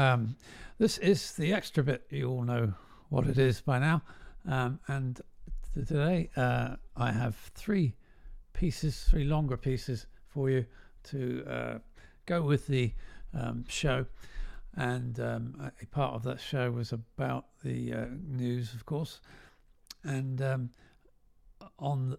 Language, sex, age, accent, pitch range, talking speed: English, male, 50-69, British, 120-145 Hz, 140 wpm